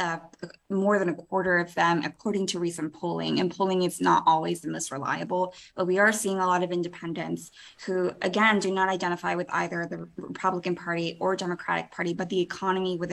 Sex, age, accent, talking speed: female, 20-39, American, 200 wpm